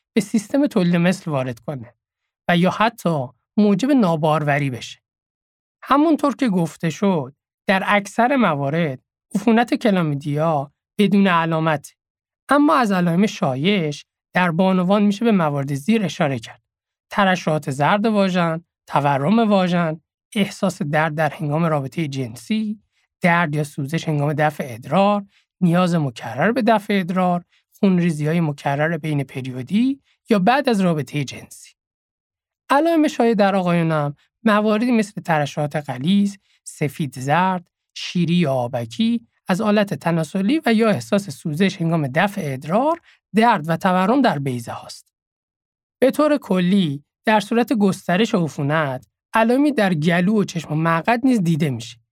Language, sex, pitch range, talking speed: Persian, male, 145-210 Hz, 130 wpm